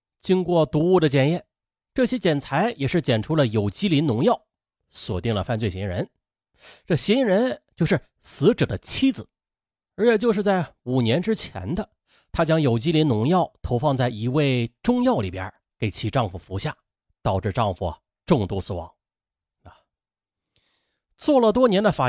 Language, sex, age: Chinese, male, 30-49